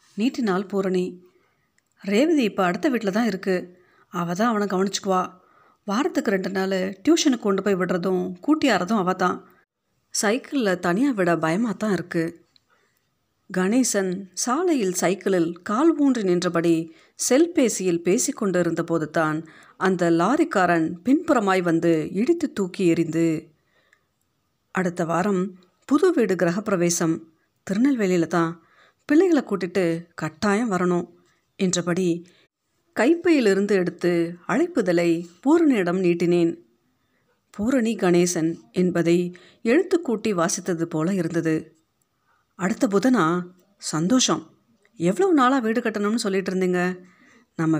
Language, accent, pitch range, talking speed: Tamil, native, 170-220 Hz, 95 wpm